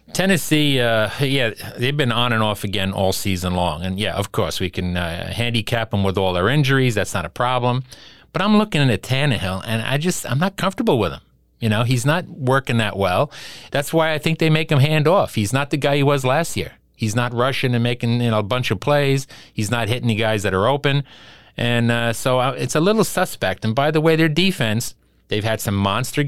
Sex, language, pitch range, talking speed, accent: male, English, 100-140 Hz, 235 wpm, American